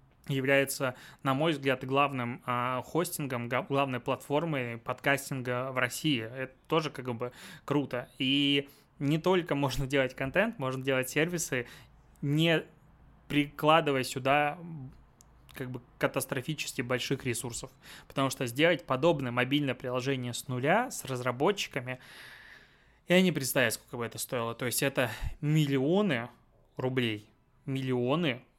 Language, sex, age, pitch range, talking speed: Russian, male, 20-39, 125-150 Hz, 120 wpm